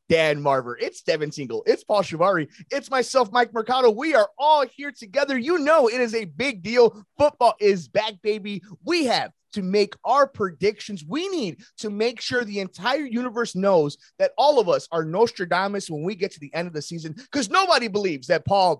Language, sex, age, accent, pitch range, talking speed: English, male, 30-49, American, 155-225 Hz, 200 wpm